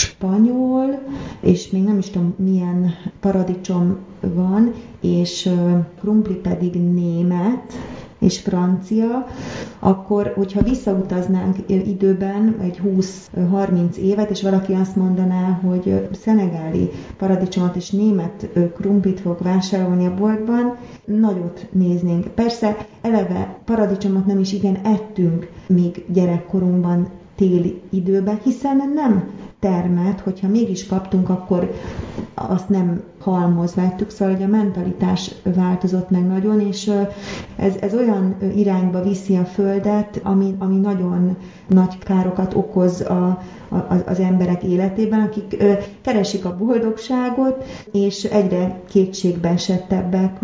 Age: 30-49